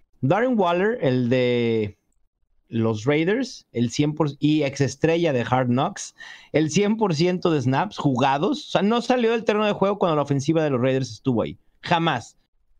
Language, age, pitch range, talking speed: Spanish, 40-59, 135-185 Hz, 165 wpm